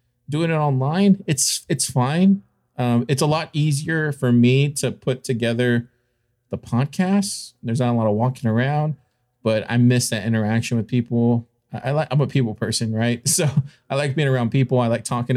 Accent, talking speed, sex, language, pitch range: American, 190 wpm, male, English, 120-135 Hz